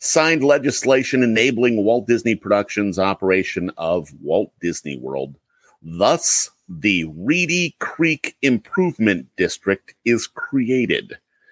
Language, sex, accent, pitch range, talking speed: English, male, American, 85-115 Hz, 100 wpm